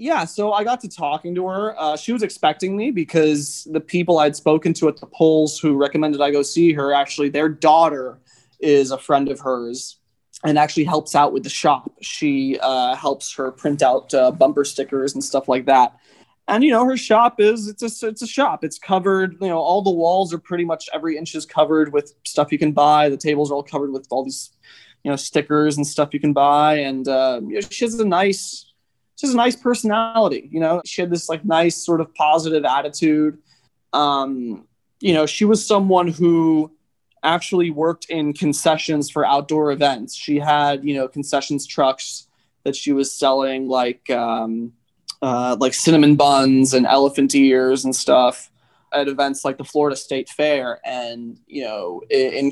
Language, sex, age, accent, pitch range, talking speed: English, male, 20-39, American, 135-170 Hz, 190 wpm